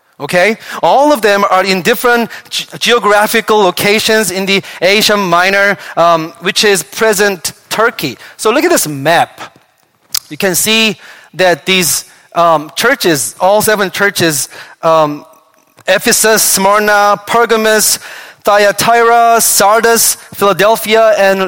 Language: English